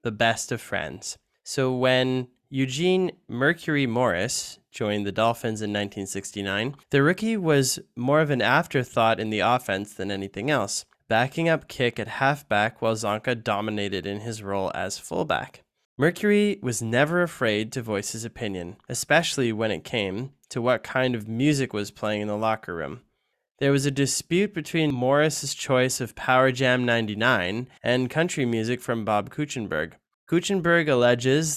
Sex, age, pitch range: male, 20-39, 110-145 Hz